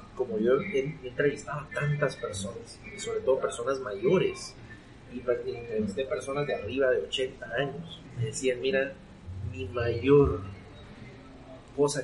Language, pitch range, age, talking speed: Spanish, 125-165 Hz, 30-49, 125 wpm